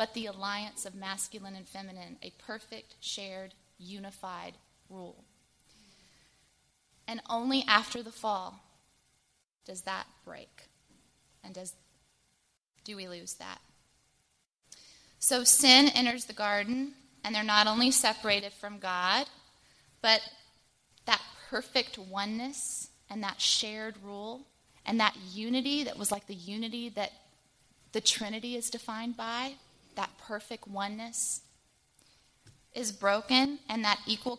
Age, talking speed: 20-39, 120 wpm